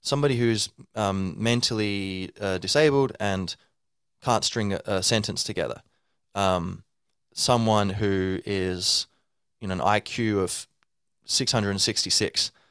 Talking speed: 105 wpm